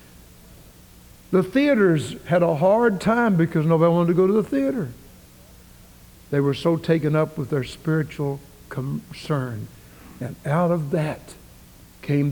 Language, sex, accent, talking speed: English, male, American, 135 wpm